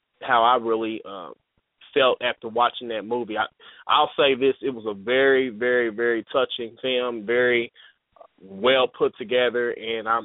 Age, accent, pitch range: 20-39, American, 120-135 Hz